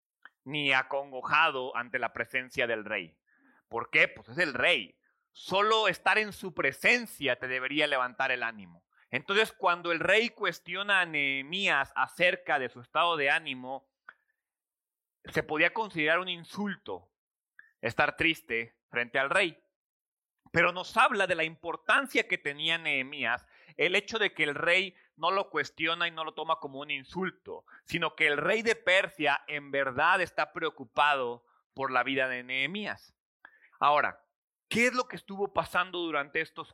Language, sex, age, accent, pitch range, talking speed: Spanish, male, 40-59, Mexican, 135-190 Hz, 155 wpm